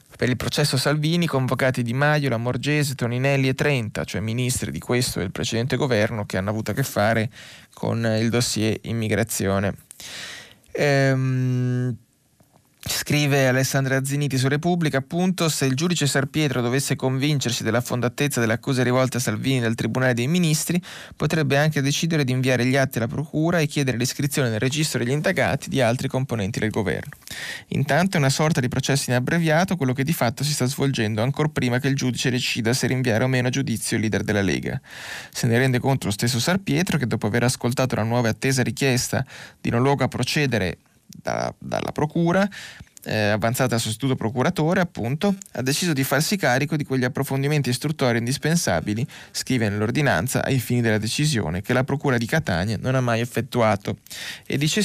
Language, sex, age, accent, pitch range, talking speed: Italian, male, 20-39, native, 120-145 Hz, 175 wpm